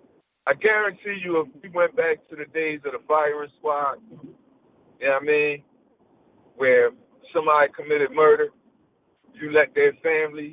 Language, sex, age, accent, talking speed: English, male, 50-69, American, 155 wpm